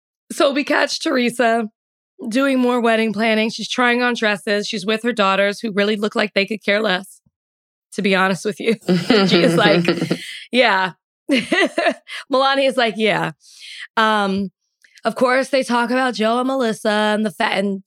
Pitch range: 185-245 Hz